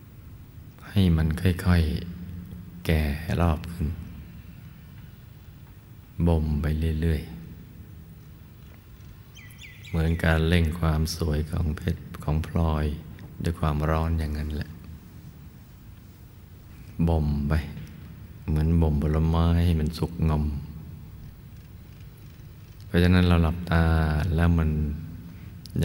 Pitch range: 80-90 Hz